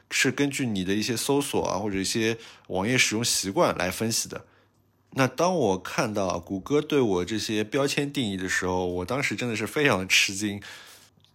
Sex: male